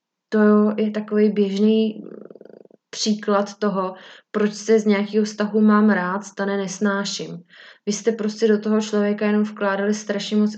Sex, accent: female, native